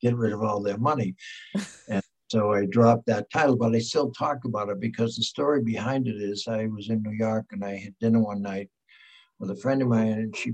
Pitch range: 110-135 Hz